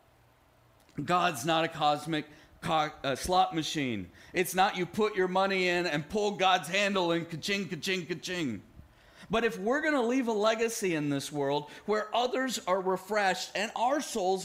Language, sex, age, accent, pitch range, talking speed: English, male, 40-59, American, 145-210 Hz, 160 wpm